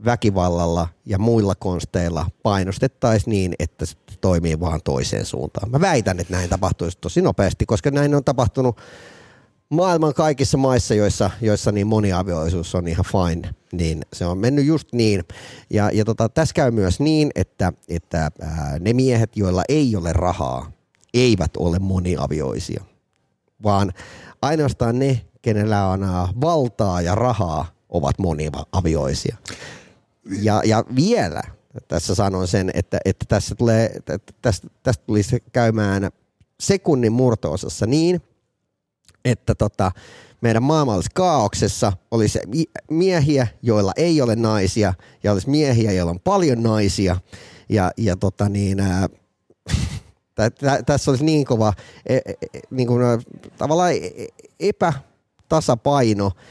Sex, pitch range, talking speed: male, 90-125 Hz, 120 wpm